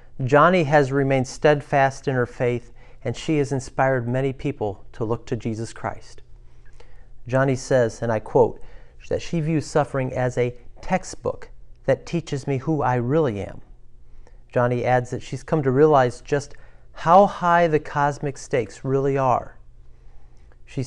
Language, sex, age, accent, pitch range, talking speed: English, male, 40-59, American, 110-145 Hz, 150 wpm